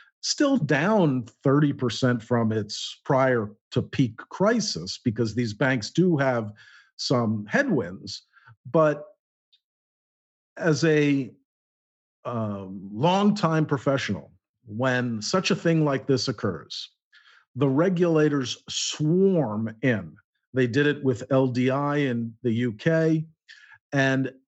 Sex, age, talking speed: male, 50-69, 105 wpm